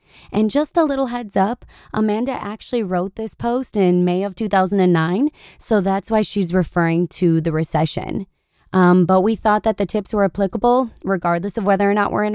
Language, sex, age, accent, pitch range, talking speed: English, female, 20-39, American, 180-225 Hz, 190 wpm